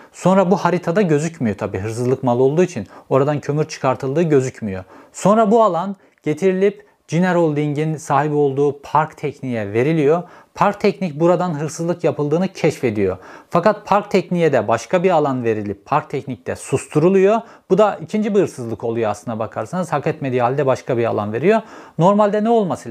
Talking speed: 155 wpm